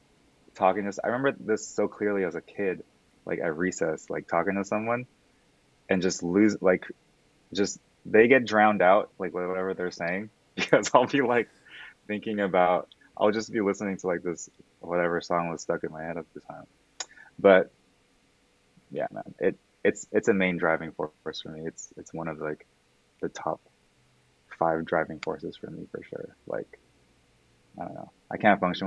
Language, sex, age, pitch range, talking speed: English, male, 20-39, 80-95 Hz, 180 wpm